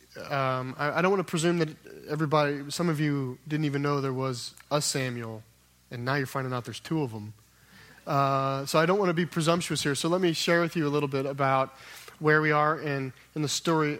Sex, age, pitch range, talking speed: male, 30-49, 130-155 Hz, 230 wpm